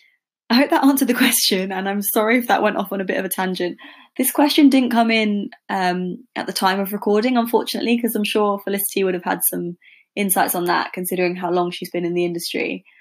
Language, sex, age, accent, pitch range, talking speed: English, female, 20-39, British, 180-225 Hz, 230 wpm